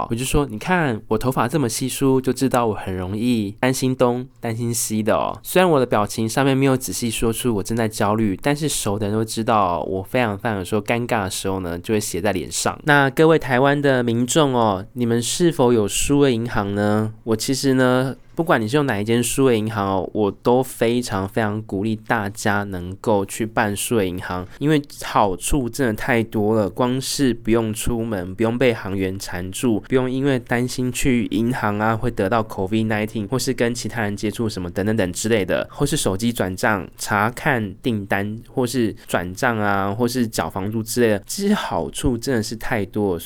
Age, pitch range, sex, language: 20-39, 105-130 Hz, male, Chinese